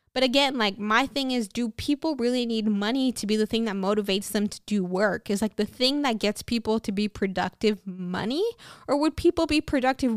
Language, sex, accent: English, female, American